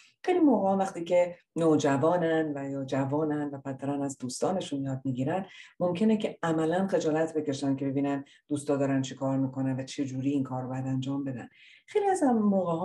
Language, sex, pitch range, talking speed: Persian, female, 135-170 Hz, 175 wpm